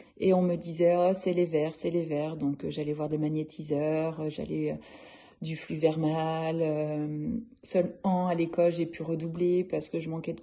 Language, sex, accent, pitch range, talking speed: French, female, French, 165-190 Hz, 195 wpm